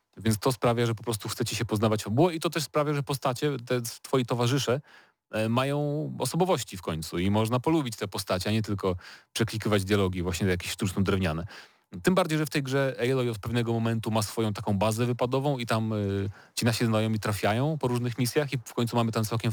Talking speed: 215 wpm